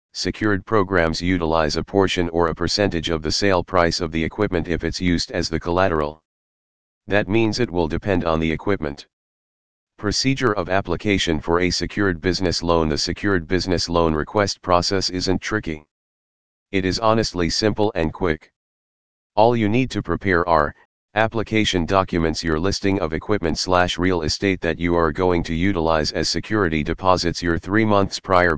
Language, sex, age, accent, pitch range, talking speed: English, male, 40-59, American, 80-95 Hz, 165 wpm